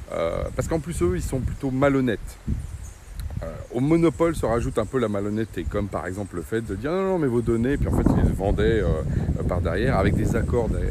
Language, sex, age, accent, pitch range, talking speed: French, male, 40-59, French, 90-120 Hz, 235 wpm